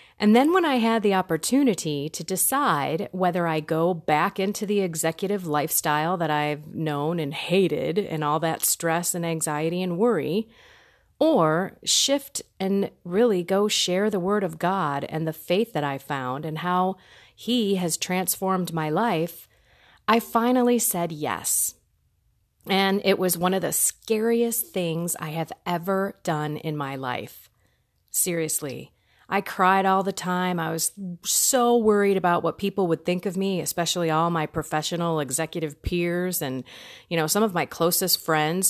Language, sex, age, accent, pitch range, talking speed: English, female, 30-49, American, 165-220 Hz, 160 wpm